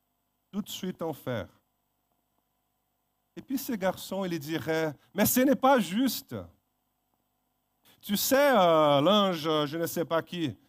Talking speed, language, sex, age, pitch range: 140 wpm, French, male, 40-59, 165-230 Hz